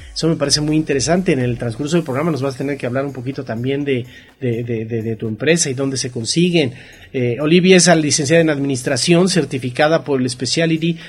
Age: 40-59